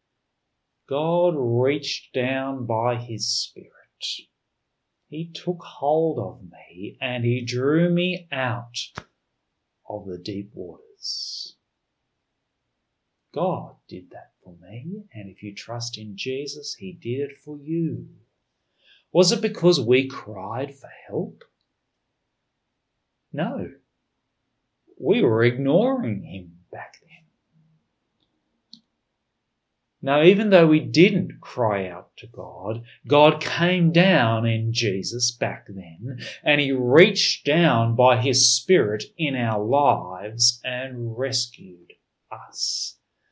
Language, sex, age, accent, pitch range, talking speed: English, male, 40-59, Australian, 115-155 Hz, 110 wpm